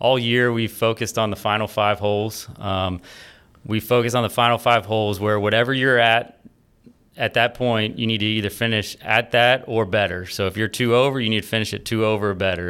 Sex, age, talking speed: male, 30-49, 220 wpm